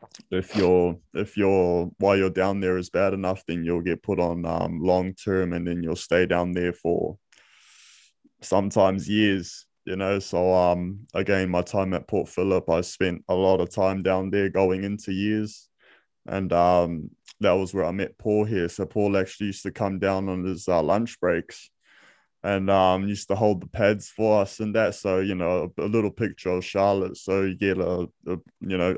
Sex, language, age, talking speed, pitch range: male, English, 20-39, 200 wpm, 90-100 Hz